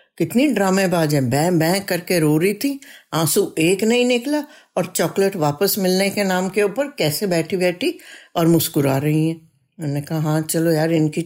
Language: Hindi